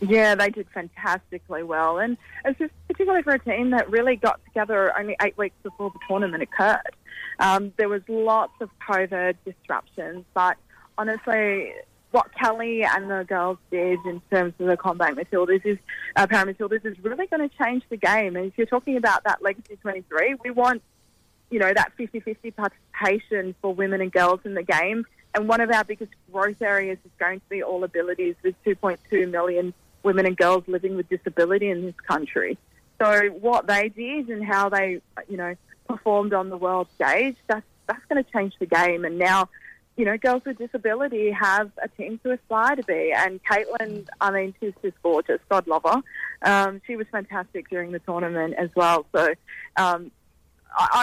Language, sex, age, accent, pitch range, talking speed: English, female, 20-39, Australian, 185-220 Hz, 185 wpm